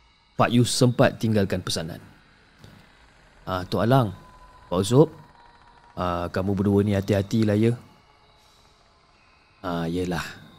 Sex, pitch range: male, 100-130 Hz